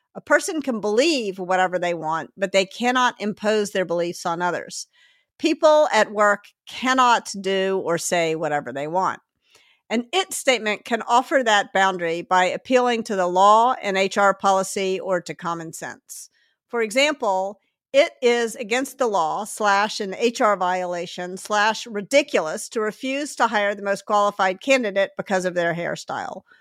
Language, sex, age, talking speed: English, female, 50-69, 155 wpm